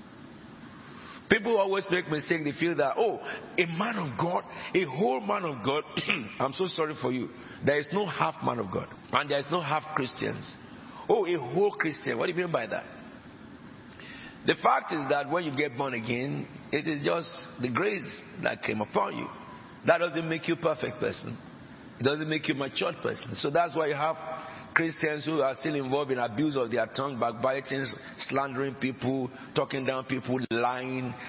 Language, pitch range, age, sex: English, 135-170 Hz, 50-69, male